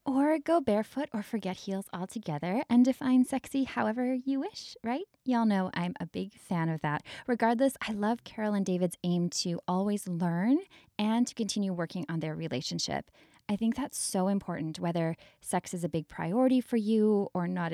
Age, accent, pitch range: 10-29, American, 170-235 Hz